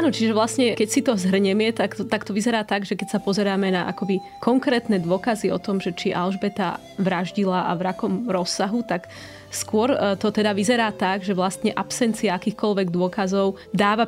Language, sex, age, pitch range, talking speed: Slovak, female, 20-39, 185-210 Hz, 180 wpm